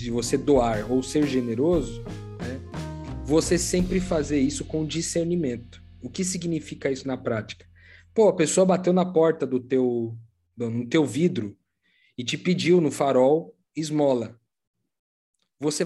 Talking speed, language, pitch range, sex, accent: 145 wpm, Portuguese, 120-165 Hz, male, Brazilian